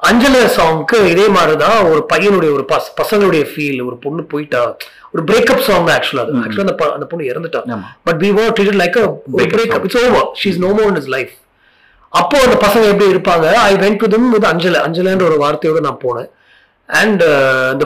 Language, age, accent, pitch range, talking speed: Tamil, 30-49, native, 150-200 Hz, 40 wpm